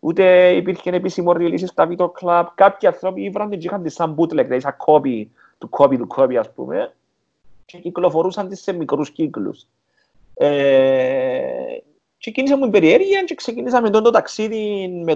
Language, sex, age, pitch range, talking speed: Greek, male, 40-59, 140-230 Hz, 145 wpm